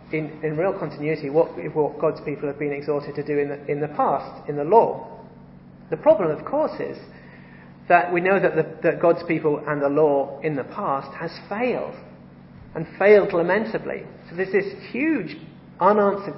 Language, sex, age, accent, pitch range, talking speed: English, male, 40-59, British, 140-185 Hz, 175 wpm